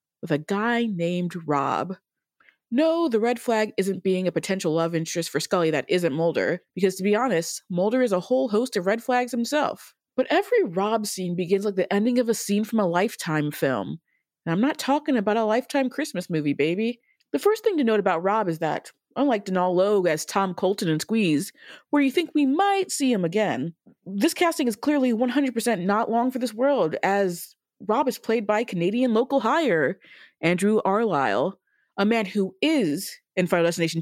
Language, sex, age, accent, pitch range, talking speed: English, female, 30-49, American, 185-255 Hz, 195 wpm